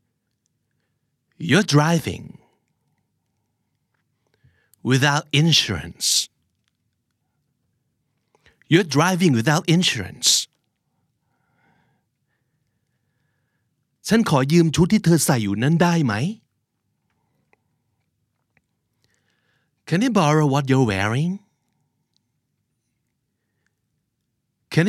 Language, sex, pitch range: Thai, male, 115-155 Hz